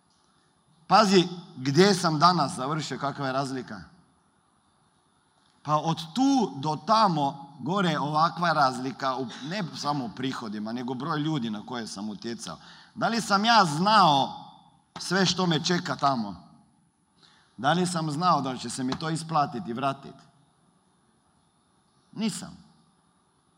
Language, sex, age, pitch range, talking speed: Croatian, male, 40-59, 130-180 Hz, 125 wpm